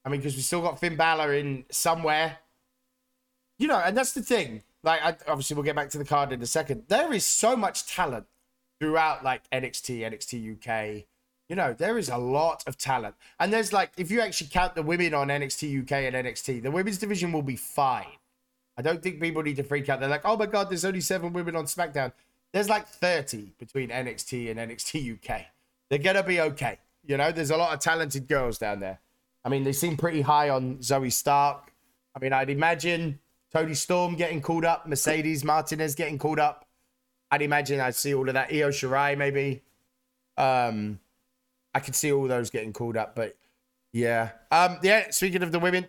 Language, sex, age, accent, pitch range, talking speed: English, male, 20-39, British, 135-180 Hz, 205 wpm